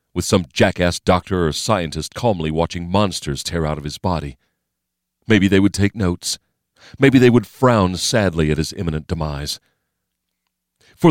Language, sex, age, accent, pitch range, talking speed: English, male, 40-59, American, 75-110 Hz, 155 wpm